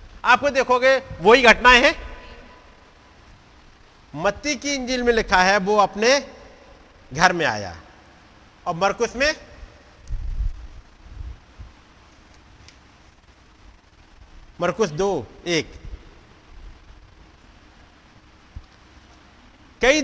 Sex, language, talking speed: male, Hindi, 70 wpm